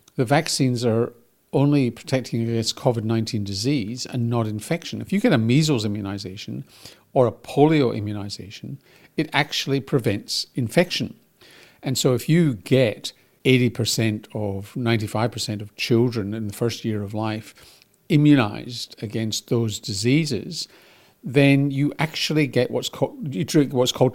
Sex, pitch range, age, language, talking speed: male, 115-140 Hz, 50-69, English, 135 wpm